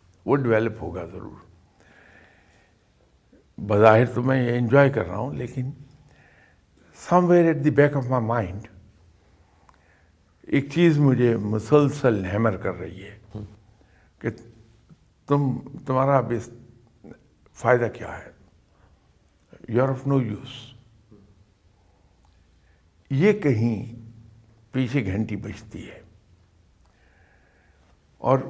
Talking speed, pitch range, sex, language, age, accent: 55 wpm, 95-125 Hz, male, English, 60-79, Indian